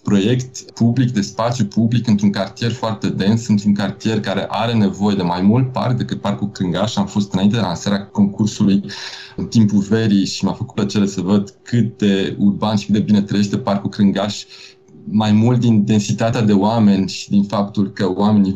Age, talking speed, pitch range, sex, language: 20-39, 185 wpm, 100-110 Hz, male, Romanian